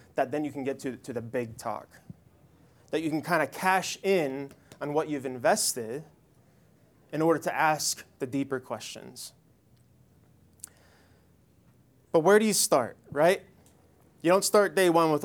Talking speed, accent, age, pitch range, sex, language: 155 wpm, American, 20-39, 135-170 Hz, male, English